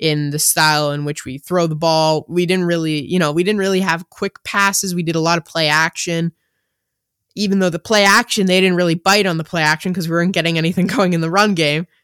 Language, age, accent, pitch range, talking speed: English, 20-39, American, 150-185 Hz, 250 wpm